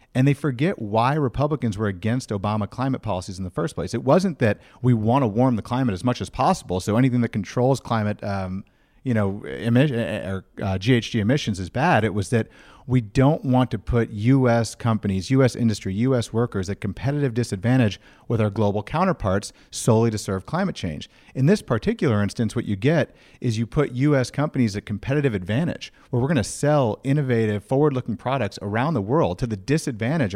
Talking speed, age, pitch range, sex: 190 wpm, 40-59, 105-135 Hz, male